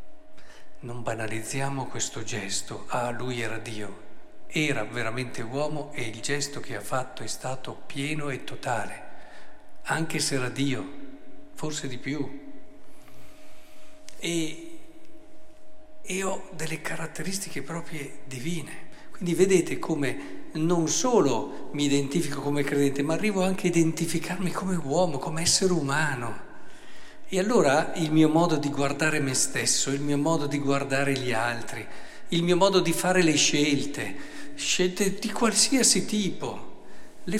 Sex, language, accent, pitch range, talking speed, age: male, Italian, native, 125-180 Hz, 135 wpm, 50-69